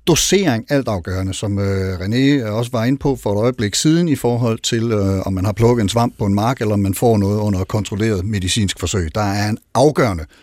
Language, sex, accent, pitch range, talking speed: Danish, male, native, 105-150 Hz, 225 wpm